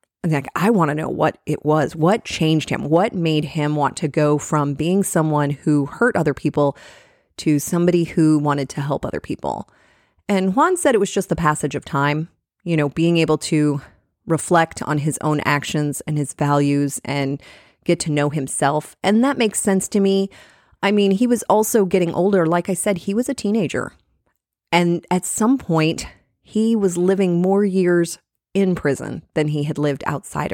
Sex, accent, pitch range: female, American, 150-190 Hz